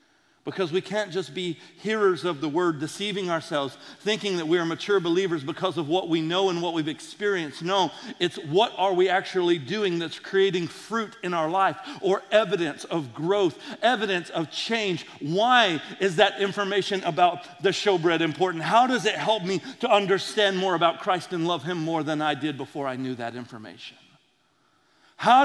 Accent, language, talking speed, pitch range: American, English, 180 wpm, 165-220 Hz